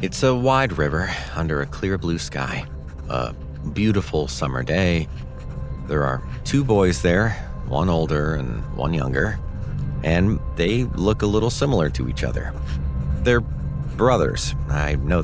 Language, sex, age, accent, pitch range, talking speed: English, male, 40-59, American, 65-90 Hz, 140 wpm